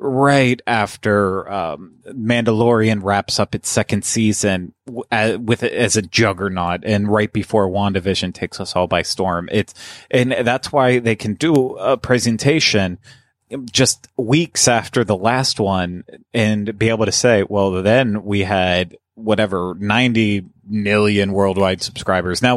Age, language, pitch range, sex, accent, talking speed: 30-49, English, 100-120 Hz, male, American, 140 wpm